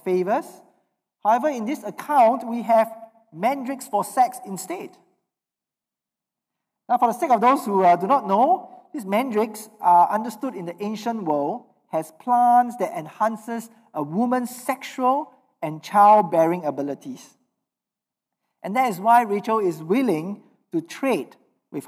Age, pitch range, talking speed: 50-69, 185-250 Hz, 140 wpm